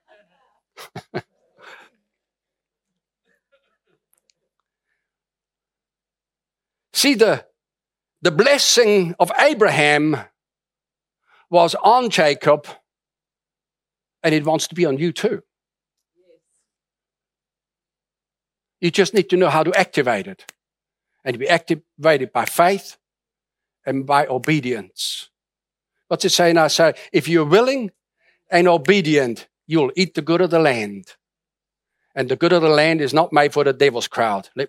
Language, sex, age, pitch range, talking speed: English, male, 60-79, 155-225 Hz, 120 wpm